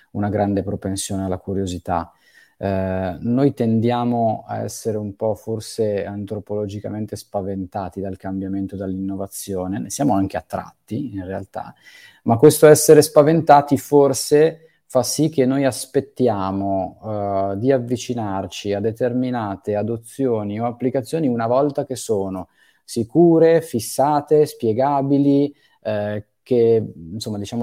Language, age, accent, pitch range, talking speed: Italian, 20-39, native, 100-125 Hz, 115 wpm